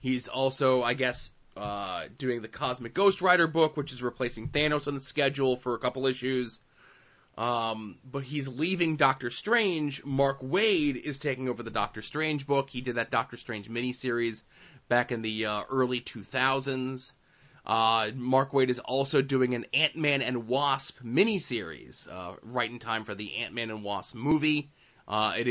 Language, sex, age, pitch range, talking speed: English, male, 20-39, 115-145 Hz, 170 wpm